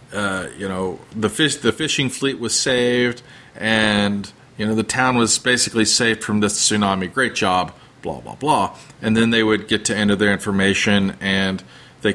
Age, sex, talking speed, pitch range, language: 40-59, male, 185 wpm, 100-125 Hz, English